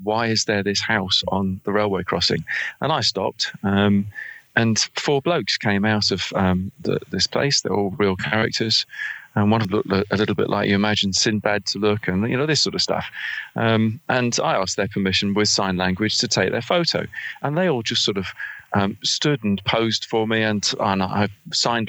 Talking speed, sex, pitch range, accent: 210 wpm, male, 100-115 Hz, British